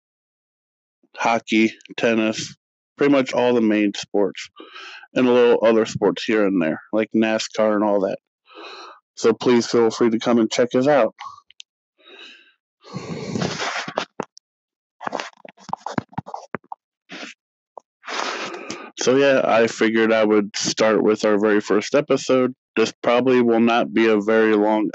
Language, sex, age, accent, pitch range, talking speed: English, male, 20-39, American, 110-130 Hz, 125 wpm